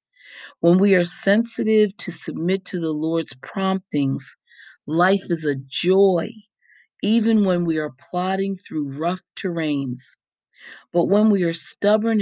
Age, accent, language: 40-59, American, English